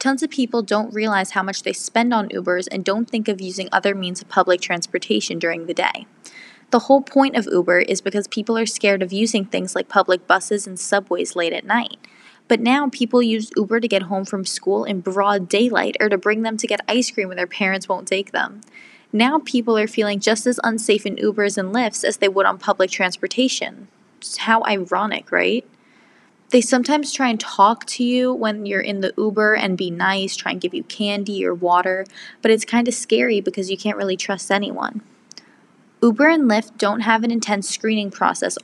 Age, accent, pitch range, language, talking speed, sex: 20-39, American, 195-235 Hz, English, 210 wpm, female